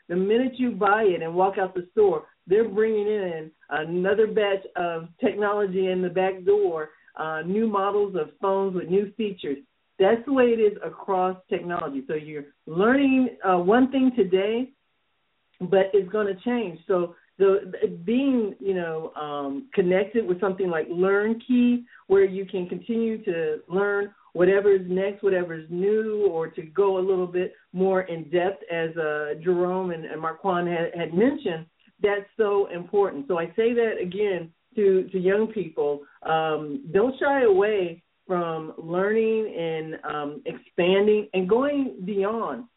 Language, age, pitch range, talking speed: English, 50-69, 175-215 Hz, 160 wpm